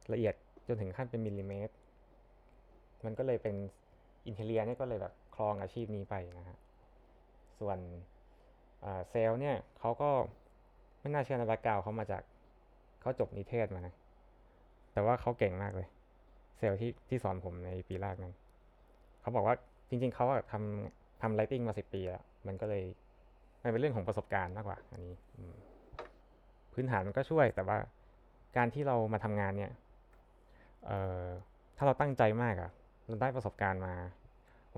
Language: Thai